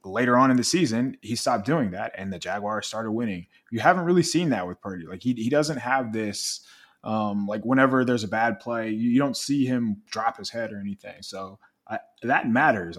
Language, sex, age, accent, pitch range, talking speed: English, male, 20-39, American, 100-130 Hz, 225 wpm